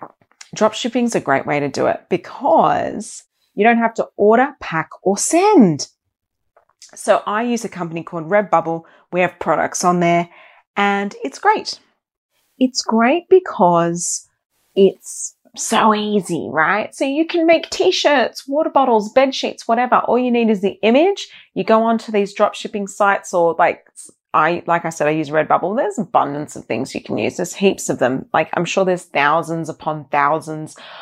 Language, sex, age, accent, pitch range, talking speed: English, female, 30-49, Australian, 165-225 Hz, 170 wpm